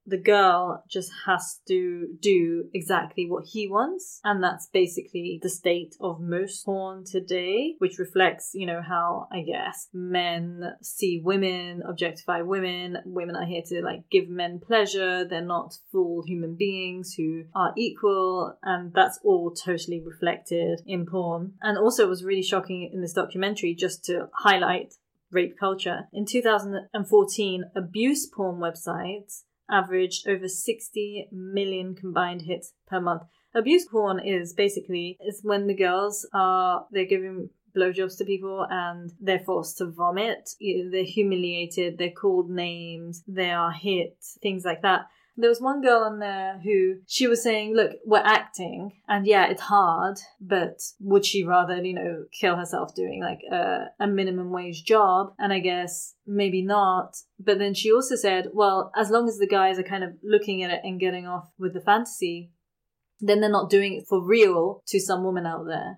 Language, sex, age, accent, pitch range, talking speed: English, female, 20-39, British, 180-205 Hz, 165 wpm